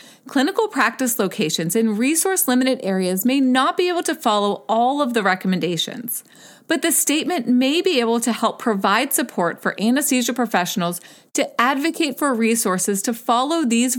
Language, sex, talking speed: English, female, 155 wpm